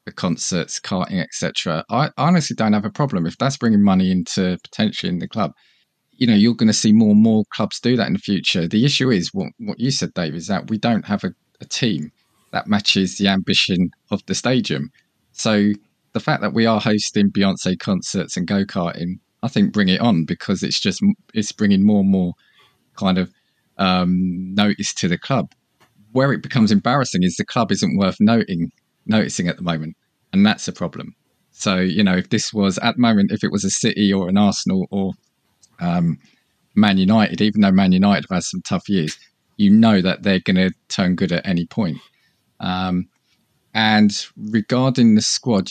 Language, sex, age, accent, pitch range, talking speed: English, male, 20-39, British, 95-135 Hz, 200 wpm